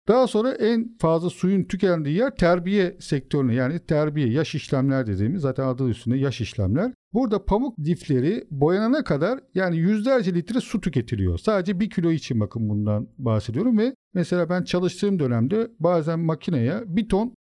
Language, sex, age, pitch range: Turkish, male, 50-69, 130-200 Hz